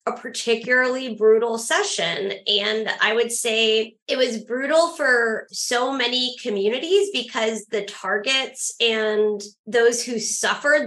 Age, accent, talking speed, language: 20-39, American, 120 wpm, English